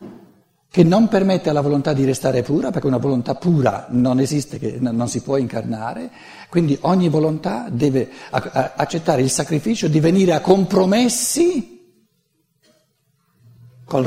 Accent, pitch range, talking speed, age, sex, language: native, 140-195 Hz, 130 wpm, 60-79, male, Italian